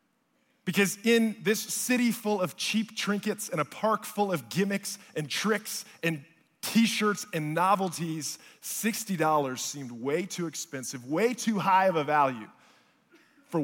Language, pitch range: English, 145-190 Hz